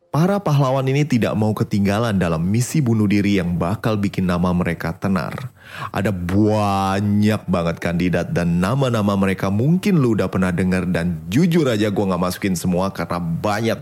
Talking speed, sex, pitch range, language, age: 160 wpm, male, 100-140 Hz, Indonesian, 30-49